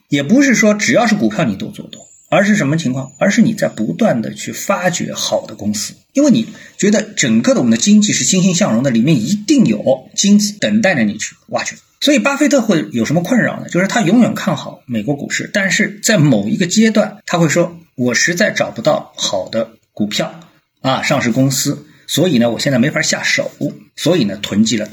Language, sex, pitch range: Chinese, male, 150-215 Hz